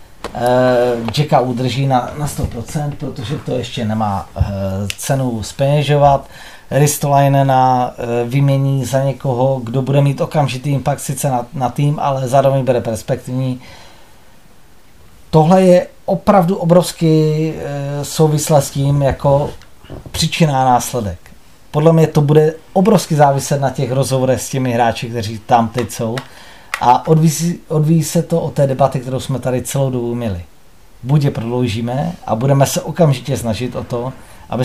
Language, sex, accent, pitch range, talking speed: Czech, male, native, 125-155 Hz, 135 wpm